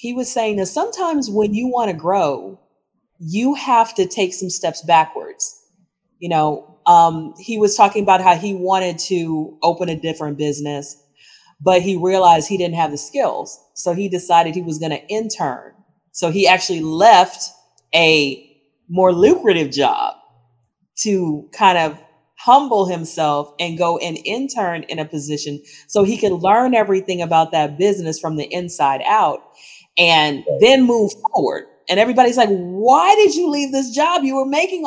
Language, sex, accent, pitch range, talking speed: English, female, American, 165-220 Hz, 165 wpm